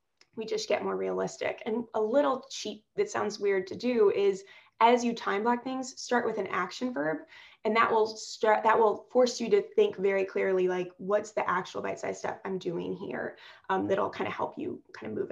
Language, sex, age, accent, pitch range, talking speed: English, female, 20-39, American, 200-240 Hz, 215 wpm